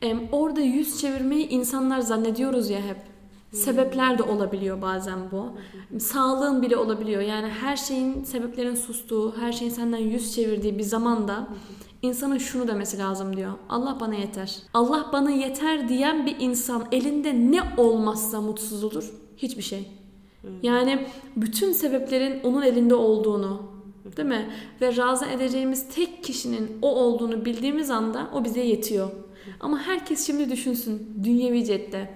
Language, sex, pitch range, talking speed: Turkish, female, 215-265 Hz, 140 wpm